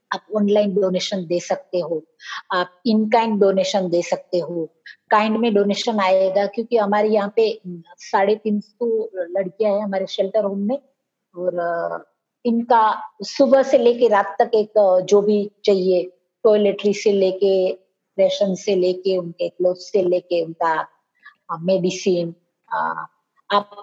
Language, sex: English, female